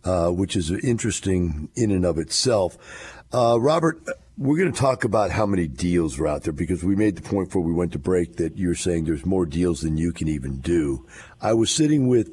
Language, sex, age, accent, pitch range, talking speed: English, male, 50-69, American, 80-100 Hz, 225 wpm